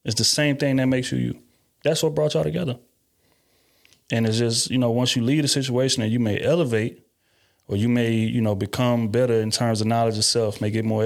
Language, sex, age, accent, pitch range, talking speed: English, male, 30-49, American, 110-130 Hz, 235 wpm